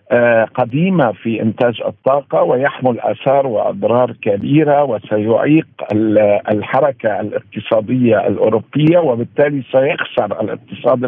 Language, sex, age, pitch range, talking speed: Arabic, male, 50-69, 115-145 Hz, 80 wpm